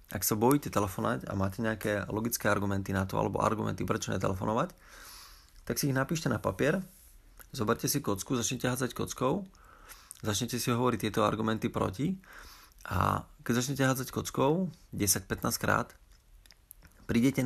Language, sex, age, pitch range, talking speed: Slovak, male, 30-49, 105-125 Hz, 145 wpm